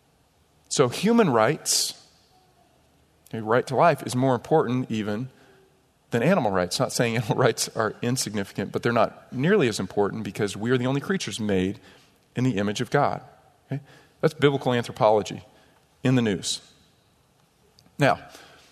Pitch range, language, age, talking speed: 115-145 Hz, English, 40-59, 150 wpm